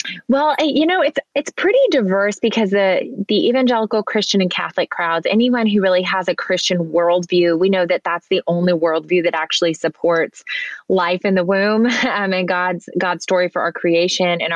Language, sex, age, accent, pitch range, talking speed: English, female, 20-39, American, 165-205 Hz, 185 wpm